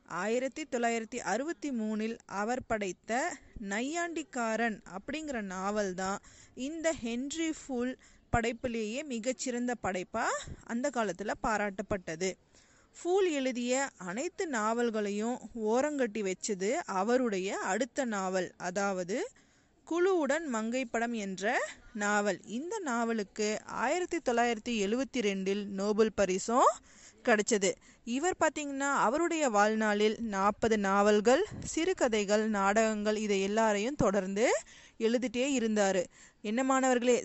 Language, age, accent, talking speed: Tamil, 20-39, native, 85 wpm